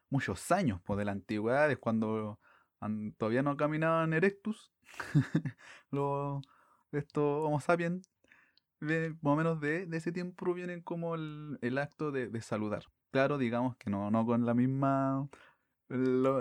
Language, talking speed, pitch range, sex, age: Spanish, 145 wpm, 120-155 Hz, male, 20-39